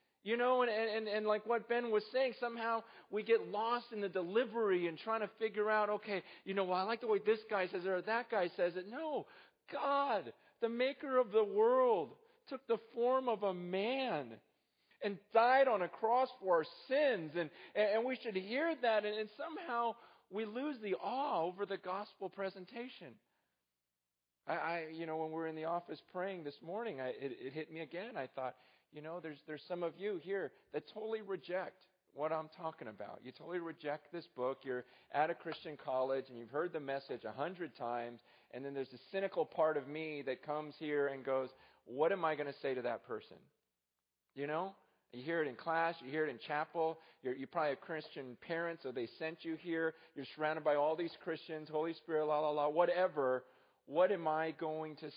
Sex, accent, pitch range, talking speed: male, American, 150-220 Hz, 210 wpm